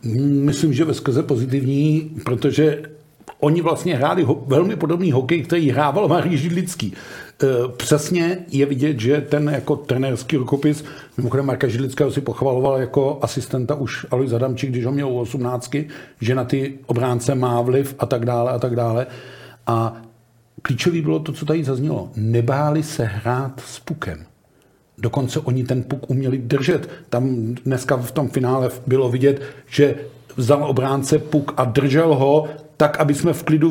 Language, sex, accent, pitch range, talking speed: Czech, male, native, 130-150 Hz, 160 wpm